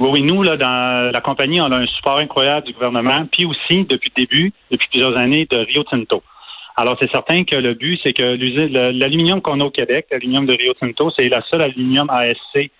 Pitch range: 125-150 Hz